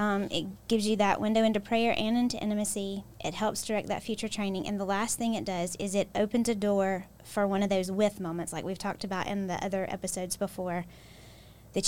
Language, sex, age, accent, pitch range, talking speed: English, female, 20-39, American, 185-215 Hz, 220 wpm